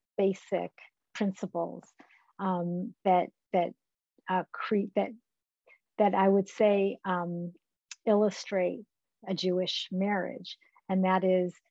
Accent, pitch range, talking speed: American, 175-200 Hz, 105 wpm